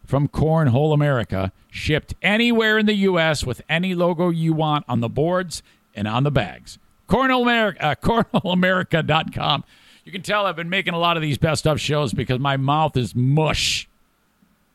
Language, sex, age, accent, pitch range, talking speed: English, male, 50-69, American, 140-190 Hz, 170 wpm